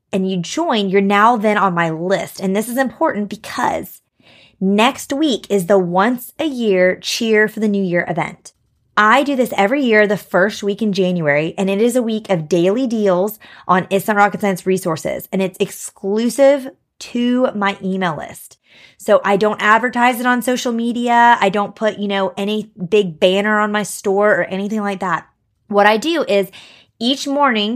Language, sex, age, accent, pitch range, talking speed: English, female, 20-39, American, 185-225 Hz, 185 wpm